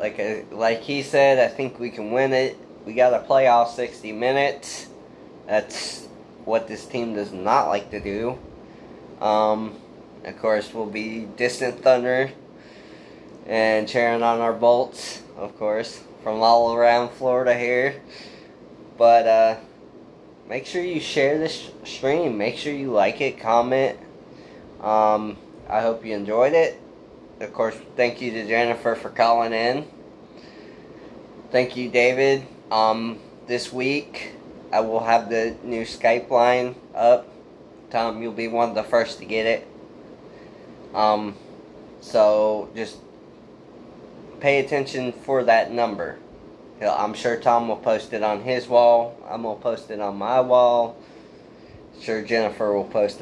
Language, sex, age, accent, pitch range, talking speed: English, male, 20-39, American, 110-125 Hz, 145 wpm